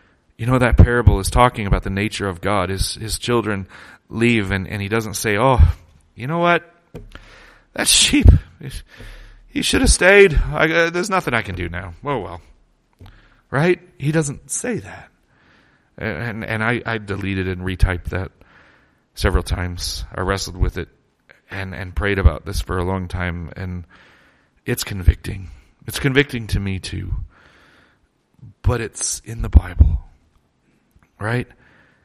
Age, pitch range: 30-49, 90-125 Hz